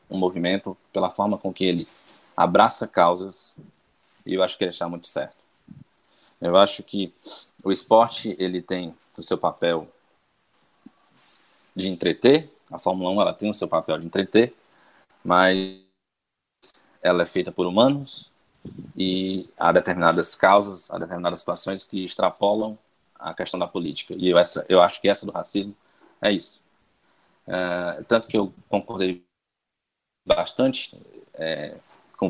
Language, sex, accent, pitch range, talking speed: Portuguese, male, Brazilian, 90-105 Hz, 145 wpm